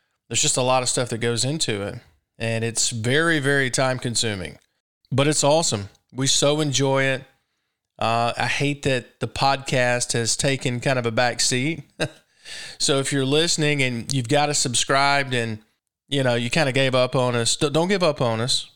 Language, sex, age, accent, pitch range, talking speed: English, male, 20-39, American, 115-135 Hz, 190 wpm